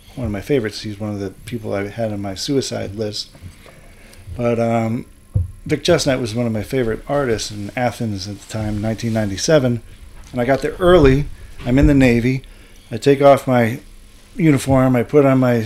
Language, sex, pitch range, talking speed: English, male, 100-125 Hz, 190 wpm